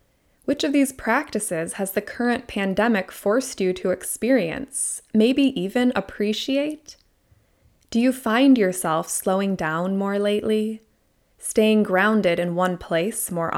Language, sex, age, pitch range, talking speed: English, female, 20-39, 190-245 Hz, 130 wpm